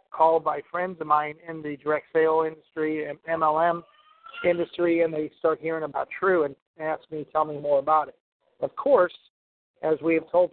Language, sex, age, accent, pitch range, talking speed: English, male, 50-69, American, 150-175 Hz, 190 wpm